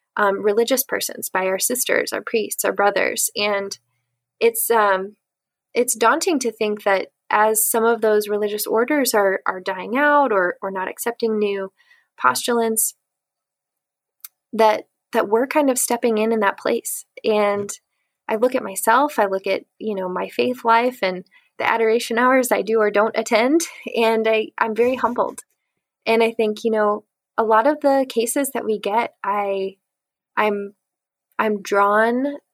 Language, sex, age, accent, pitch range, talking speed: English, female, 20-39, American, 205-245 Hz, 160 wpm